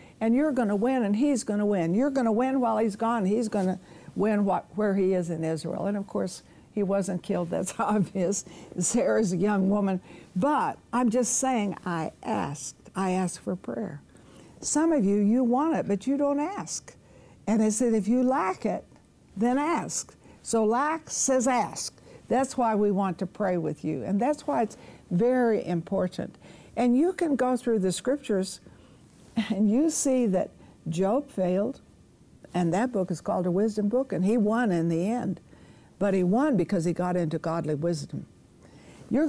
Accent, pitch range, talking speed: American, 185-255 Hz, 190 wpm